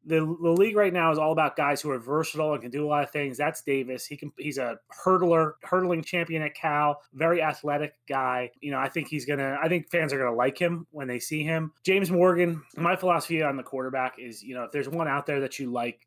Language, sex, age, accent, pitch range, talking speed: English, male, 30-49, American, 130-160 Hz, 255 wpm